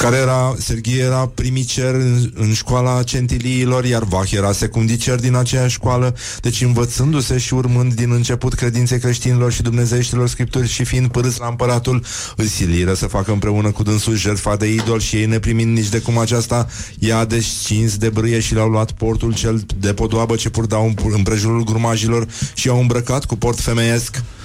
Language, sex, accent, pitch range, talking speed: Romanian, male, native, 110-120 Hz, 170 wpm